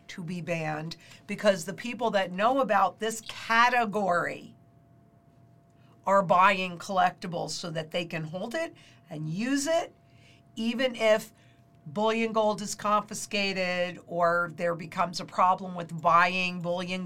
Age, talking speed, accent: 50-69, 130 wpm, American